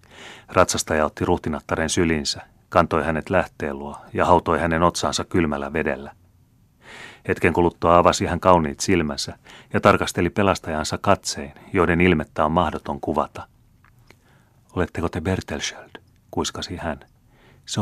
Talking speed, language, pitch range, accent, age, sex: 115 wpm, Finnish, 75-95 Hz, native, 30-49, male